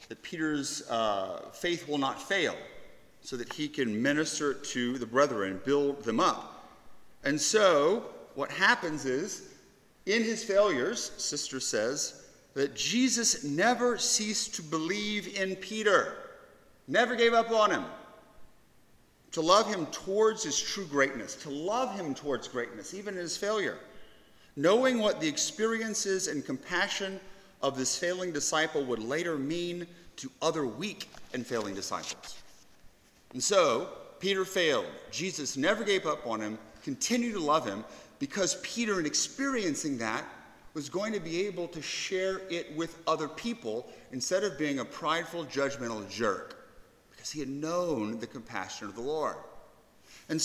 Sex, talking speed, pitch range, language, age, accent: male, 145 wpm, 145-215 Hz, English, 40-59, American